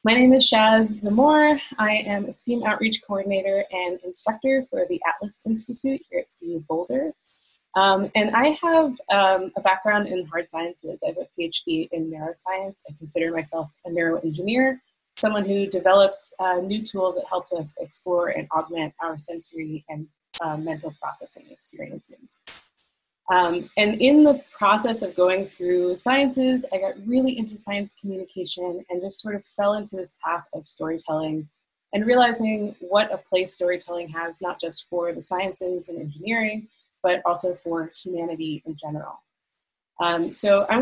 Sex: female